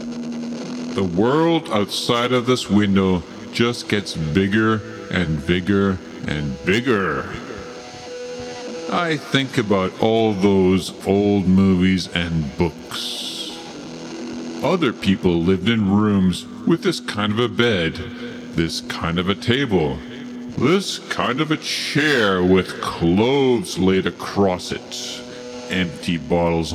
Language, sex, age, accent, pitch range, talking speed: English, female, 50-69, American, 85-130 Hz, 110 wpm